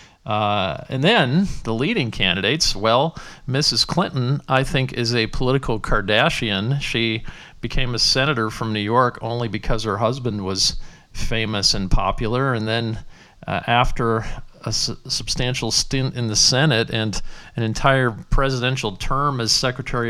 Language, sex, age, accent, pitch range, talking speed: English, male, 40-59, American, 110-140 Hz, 140 wpm